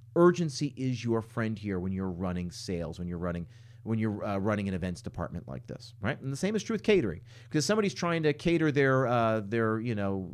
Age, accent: 40-59, American